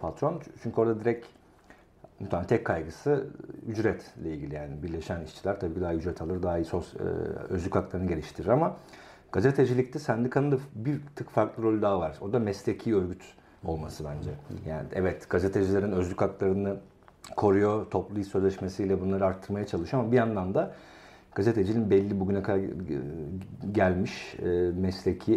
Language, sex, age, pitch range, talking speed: Turkish, male, 50-69, 90-110 Hz, 140 wpm